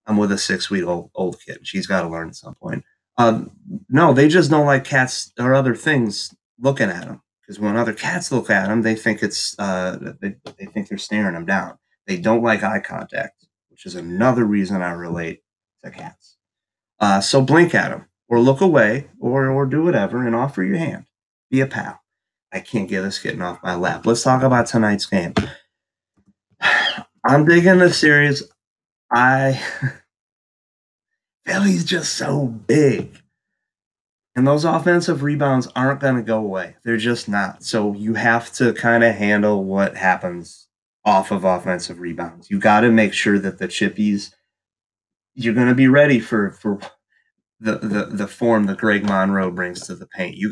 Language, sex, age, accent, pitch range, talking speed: English, male, 30-49, American, 100-135 Hz, 180 wpm